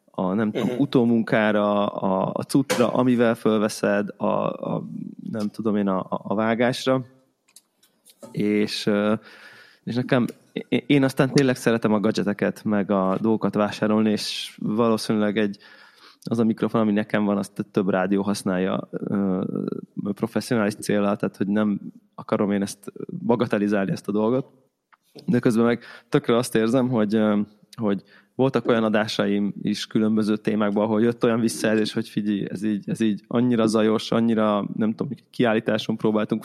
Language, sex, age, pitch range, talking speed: Hungarian, male, 20-39, 105-120 Hz, 140 wpm